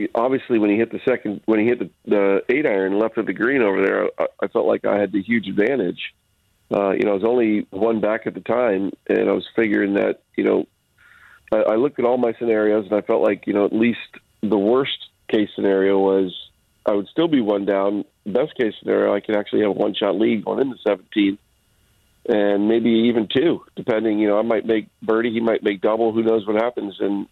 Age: 40-59